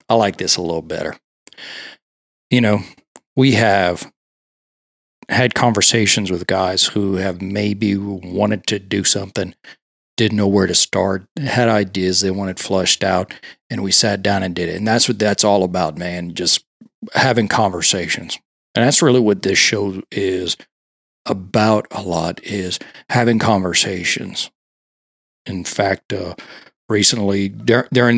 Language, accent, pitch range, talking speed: English, American, 95-110 Hz, 145 wpm